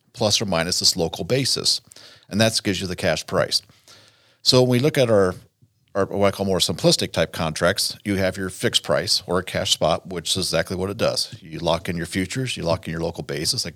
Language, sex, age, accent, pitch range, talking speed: English, male, 40-59, American, 85-110 Hz, 235 wpm